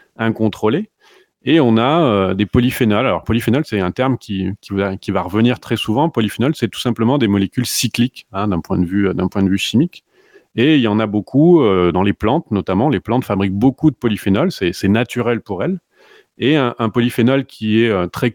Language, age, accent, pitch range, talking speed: French, 30-49, French, 100-125 Hz, 220 wpm